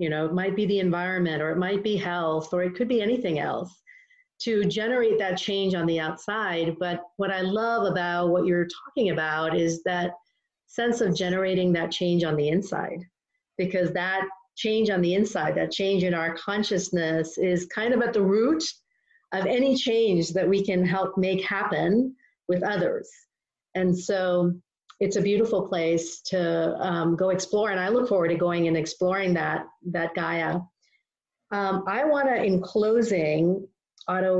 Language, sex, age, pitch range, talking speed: English, female, 40-59, 180-225 Hz, 175 wpm